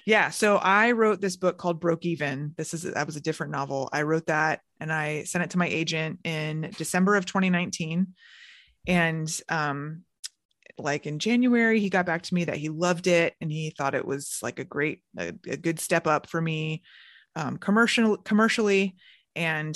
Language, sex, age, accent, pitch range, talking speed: English, female, 20-39, American, 155-180 Hz, 190 wpm